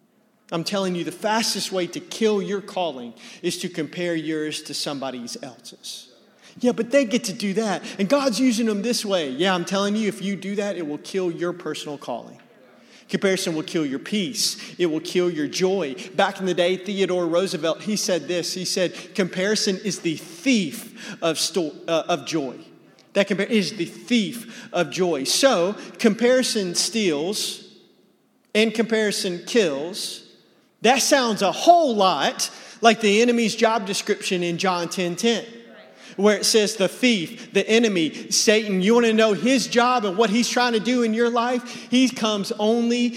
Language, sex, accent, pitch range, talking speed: English, male, American, 175-235 Hz, 170 wpm